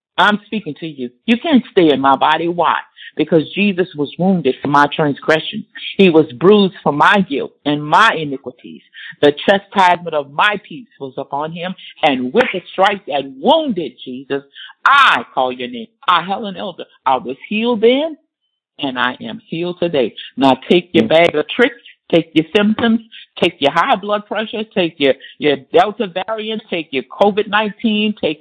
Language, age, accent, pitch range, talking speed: English, 50-69, American, 140-225 Hz, 170 wpm